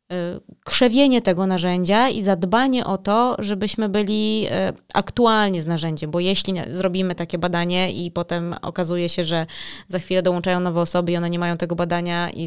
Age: 20-39